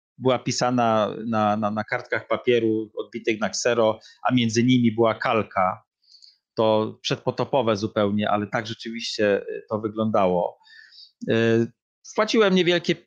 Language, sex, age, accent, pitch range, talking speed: Polish, male, 40-59, native, 110-135 Hz, 115 wpm